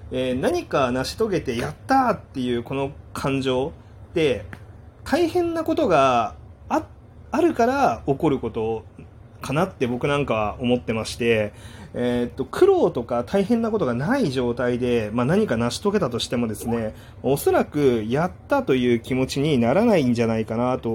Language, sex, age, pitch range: Japanese, male, 30-49, 115-180 Hz